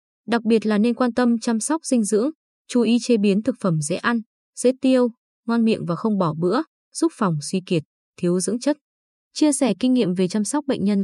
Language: Vietnamese